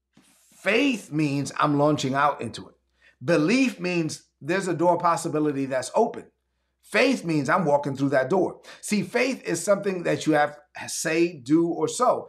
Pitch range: 145-190 Hz